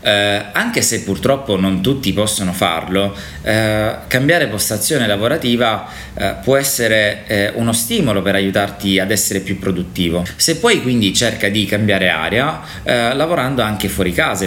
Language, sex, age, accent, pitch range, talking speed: Italian, male, 20-39, native, 95-110 Hz, 150 wpm